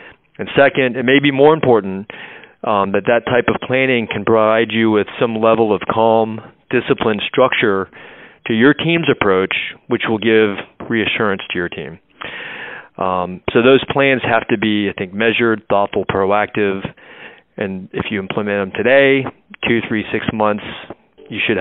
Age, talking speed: 30-49, 160 wpm